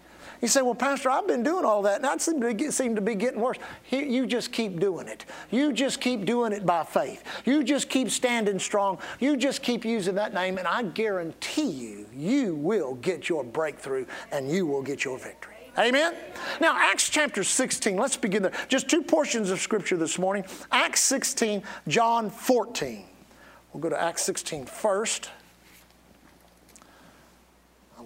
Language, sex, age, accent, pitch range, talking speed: English, male, 50-69, American, 180-255 Hz, 180 wpm